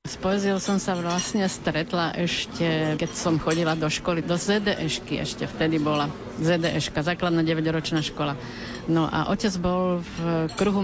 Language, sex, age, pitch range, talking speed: Slovak, female, 50-69, 160-185 Hz, 145 wpm